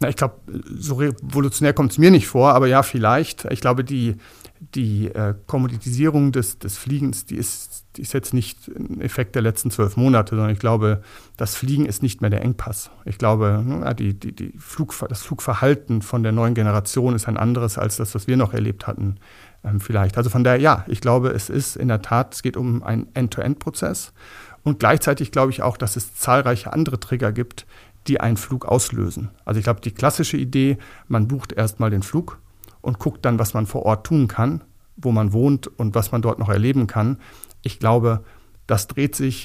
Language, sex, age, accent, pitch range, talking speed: German, male, 50-69, German, 105-130 Hz, 200 wpm